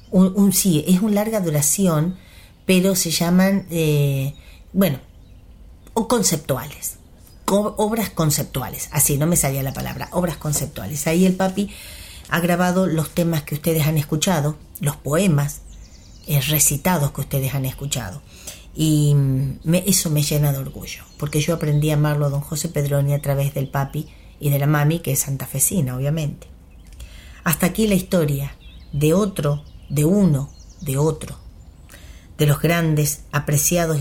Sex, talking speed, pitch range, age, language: female, 145 wpm, 140-170 Hz, 40-59, Spanish